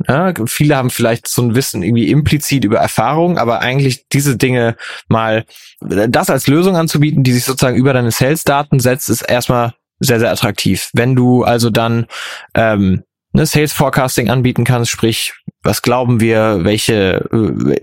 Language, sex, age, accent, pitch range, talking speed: German, male, 20-39, German, 115-135 Hz, 150 wpm